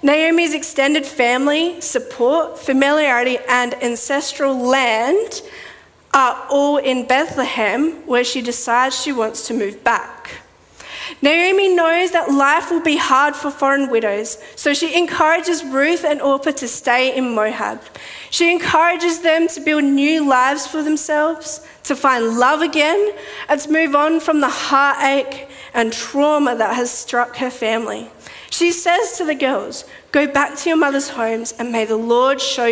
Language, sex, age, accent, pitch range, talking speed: English, female, 40-59, Australian, 235-310 Hz, 150 wpm